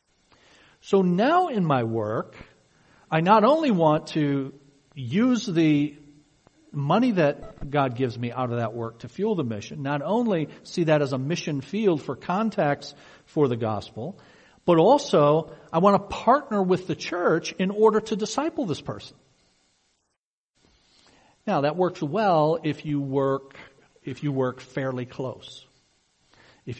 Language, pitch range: English, 125-165 Hz